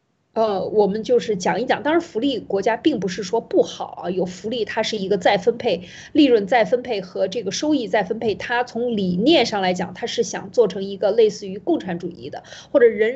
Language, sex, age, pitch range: Chinese, female, 20-39, 195-300 Hz